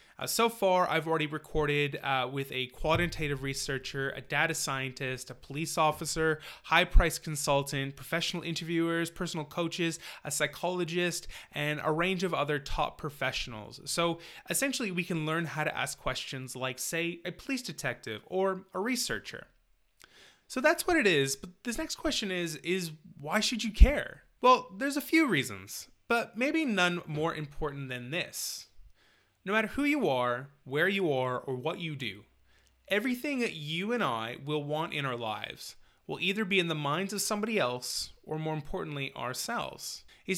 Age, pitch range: 20-39, 140-190 Hz